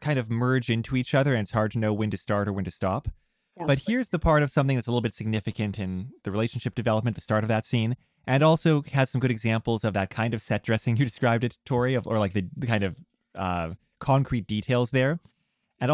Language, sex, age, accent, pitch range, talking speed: English, male, 20-39, American, 95-125 Hz, 250 wpm